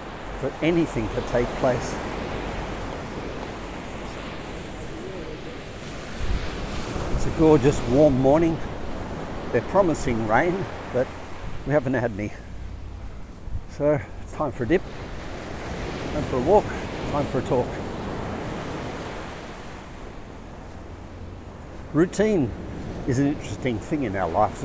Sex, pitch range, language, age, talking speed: male, 90-140 Hz, English, 60-79, 95 wpm